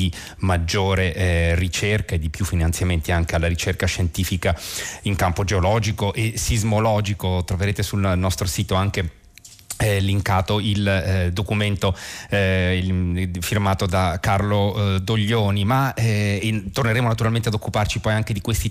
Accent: native